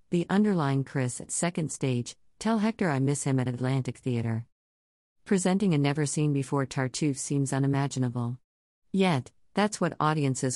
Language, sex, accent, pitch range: English, female, American, 130-155 Hz